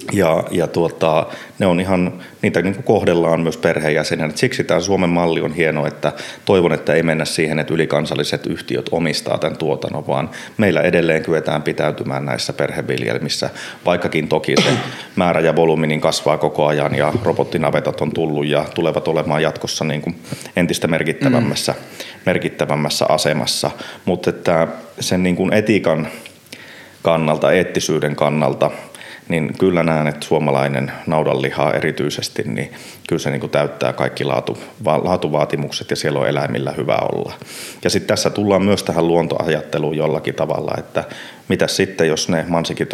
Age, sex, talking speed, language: 30-49, male, 145 wpm, Finnish